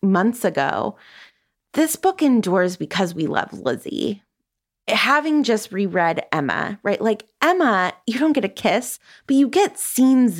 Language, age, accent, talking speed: English, 20-39, American, 145 wpm